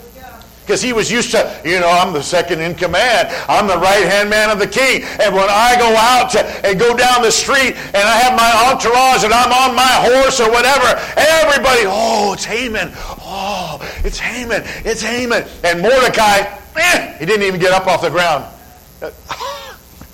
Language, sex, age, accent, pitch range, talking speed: English, male, 50-69, American, 235-285 Hz, 180 wpm